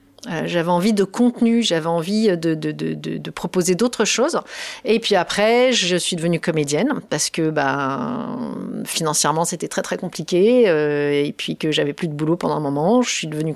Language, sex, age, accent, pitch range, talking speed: French, female, 40-59, French, 155-190 Hz, 195 wpm